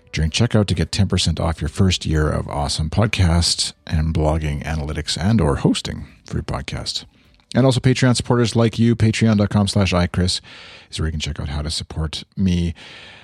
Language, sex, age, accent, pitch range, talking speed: English, male, 40-59, American, 80-105 Hz, 175 wpm